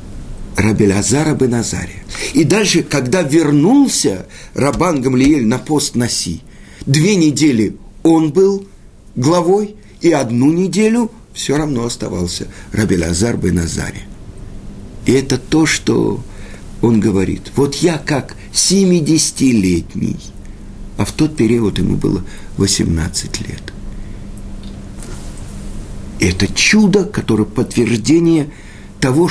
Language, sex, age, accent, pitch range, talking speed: Russian, male, 50-69, native, 105-170 Hz, 100 wpm